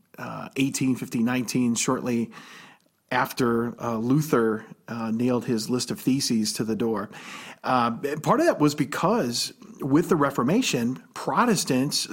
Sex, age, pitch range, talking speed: male, 40-59, 120-150 Hz, 135 wpm